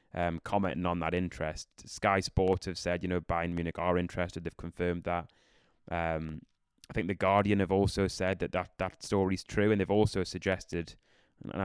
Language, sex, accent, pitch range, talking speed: English, male, British, 85-95 Hz, 185 wpm